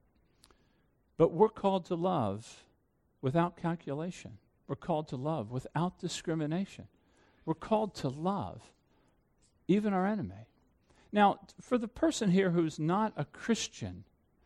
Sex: male